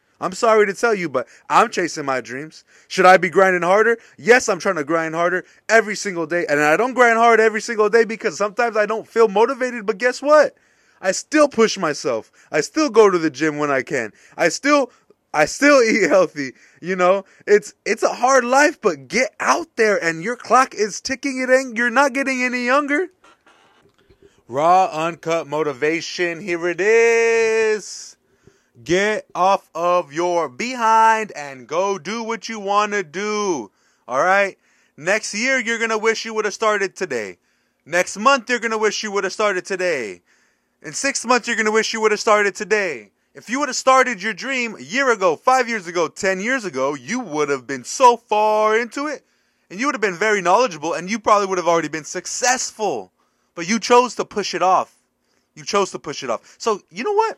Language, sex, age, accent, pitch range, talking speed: English, male, 20-39, American, 180-245 Hz, 200 wpm